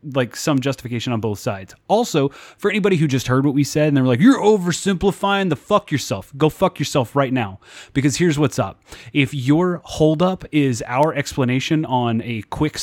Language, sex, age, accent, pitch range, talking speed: English, male, 30-49, American, 120-155 Hz, 190 wpm